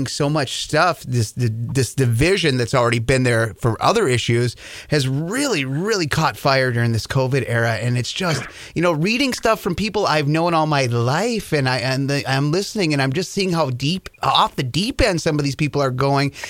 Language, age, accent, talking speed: English, 30-49, American, 220 wpm